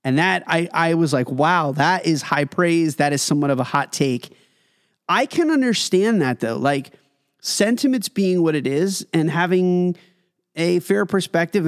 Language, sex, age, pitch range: English, male, 30-49, 150-190 Hz